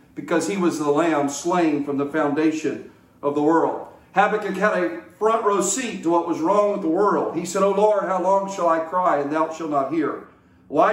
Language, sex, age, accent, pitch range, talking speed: English, male, 40-59, American, 160-190 Hz, 220 wpm